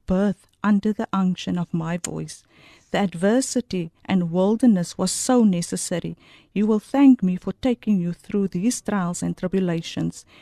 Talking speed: 150 wpm